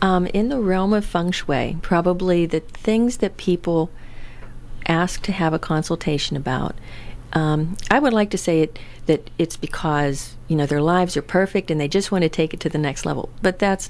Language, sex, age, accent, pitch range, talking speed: English, female, 40-59, American, 150-180 Hz, 205 wpm